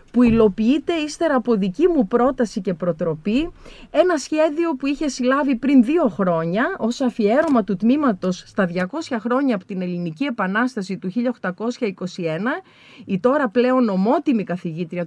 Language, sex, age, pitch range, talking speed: Greek, female, 30-49, 190-260 Hz, 140 wpm